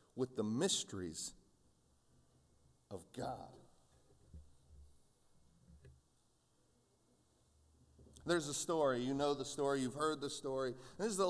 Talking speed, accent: 105 wpm, American